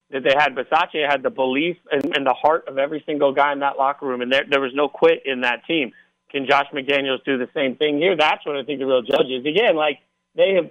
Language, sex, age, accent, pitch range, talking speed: English, male, 40-59, American, 140-160 Hz, 265 wpm